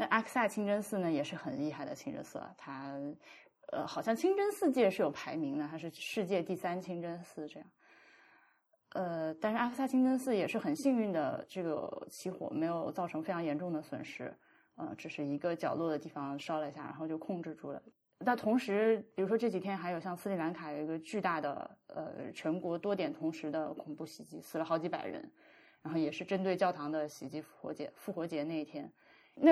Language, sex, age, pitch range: Chinese, female, 20-39, 160-225 Hz